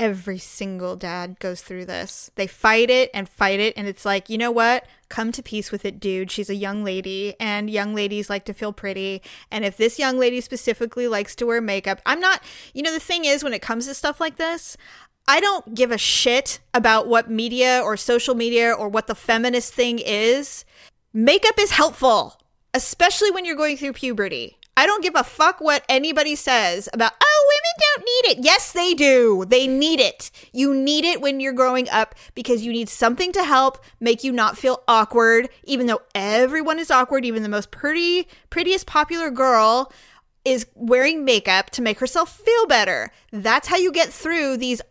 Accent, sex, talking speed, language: American, female, 200 wpm, English